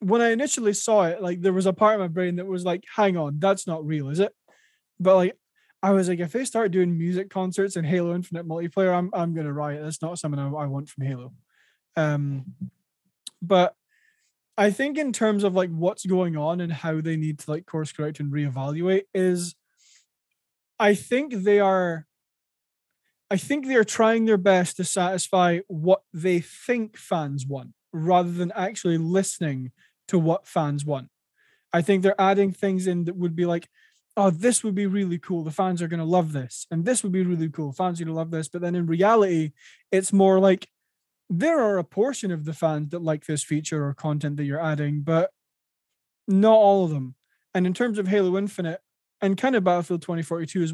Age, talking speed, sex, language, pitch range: 20-39, 205 wpm, male, English, 160-195 Hz